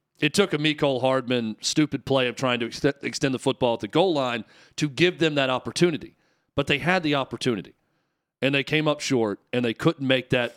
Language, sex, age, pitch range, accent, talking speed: English, male, 40-59, 130-165 Hz, American, 210 wpm